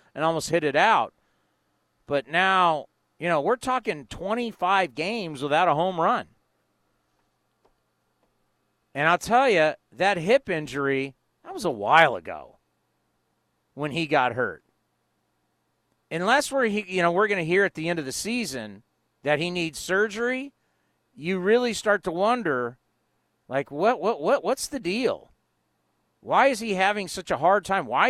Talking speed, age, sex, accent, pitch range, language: 155 wpm, 40-59, male, American, 135-215 Hz, English